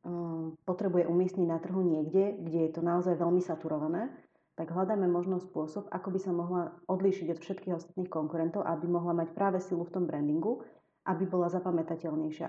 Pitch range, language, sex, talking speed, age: 165-185 Hz, English, female, 170 wpm, 30-49